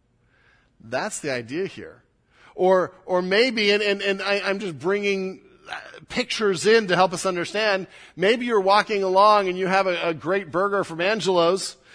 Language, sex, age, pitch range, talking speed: English, male, 40-59, 170-215 Hz, 165 wpm